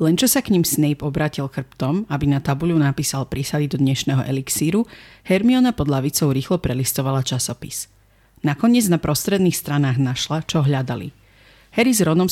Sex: female